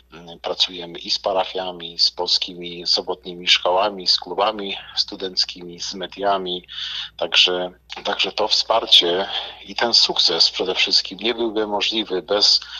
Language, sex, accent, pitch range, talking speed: Polish, male, native, 85-100 Hz, 120 wpm